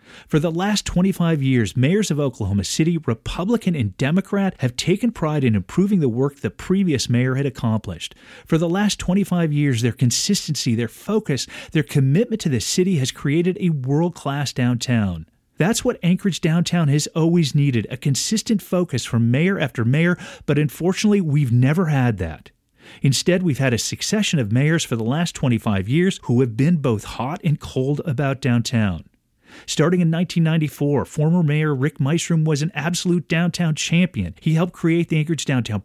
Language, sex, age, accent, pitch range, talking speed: English, male, 40-59, American, 130-175 Hz, 170 wpm